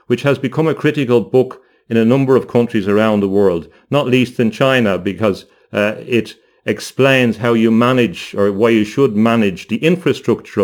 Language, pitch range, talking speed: English, 105-125 Hz, 180 wpm